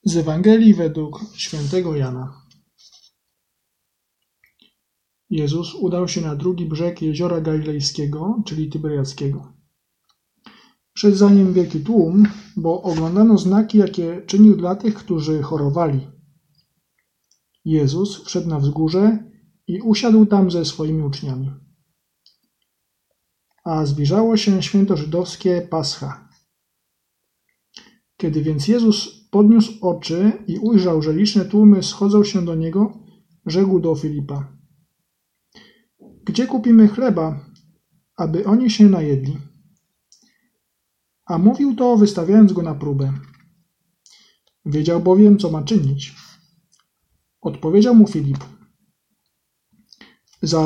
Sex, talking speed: male, 100 wpm